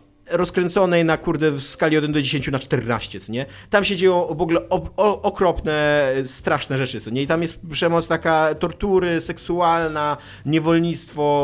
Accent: native